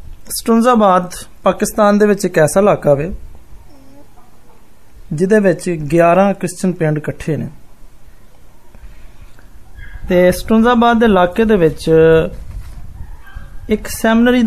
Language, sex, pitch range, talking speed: Hindi, male, 160-205 Hz, 55 wpm